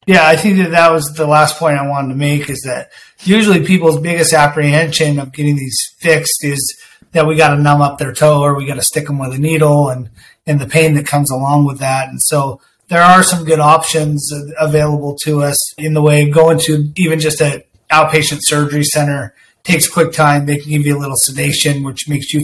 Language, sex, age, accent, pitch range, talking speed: English, male, 30-49, American, 140-160 Hz, 230 wpm